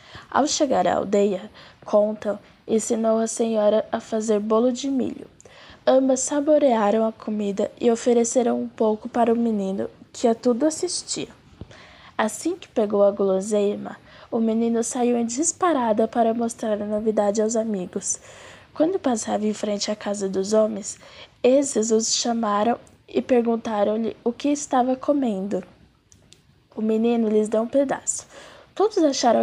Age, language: 10-29, Portuguese